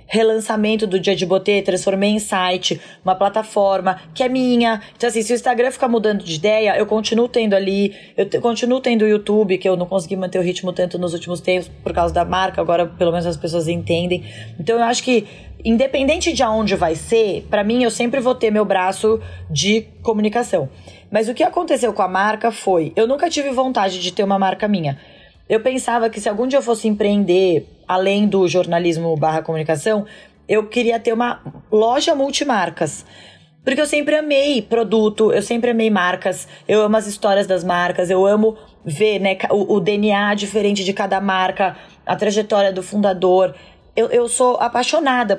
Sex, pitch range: female, 185-230 Hz